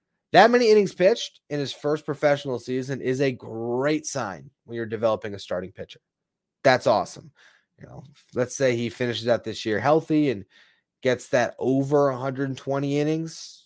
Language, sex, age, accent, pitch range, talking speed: English, male, 20-39, American, 120-155 Hz, 165 wpm